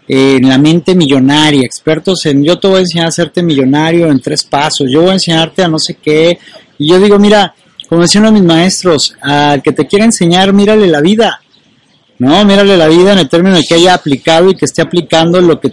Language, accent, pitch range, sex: Spanish, Mexican, 145-190 Hz, male